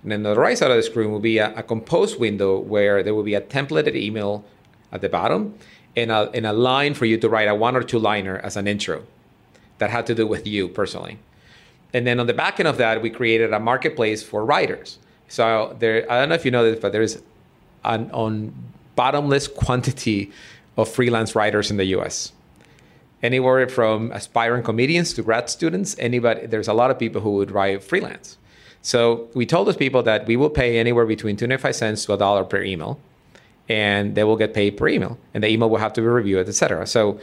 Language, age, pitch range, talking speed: English, 30-49, 105-120 Hz, 225 wpm